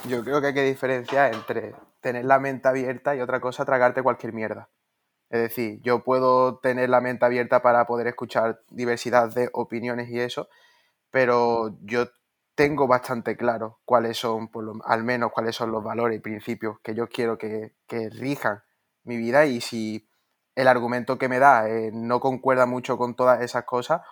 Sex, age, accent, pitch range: male, 20-39, Spanish, 115-135 Hz